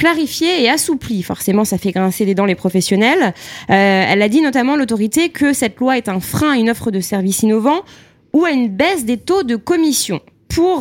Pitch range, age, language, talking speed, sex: 190-255 Hz, 20-39, French, 215 wpm, female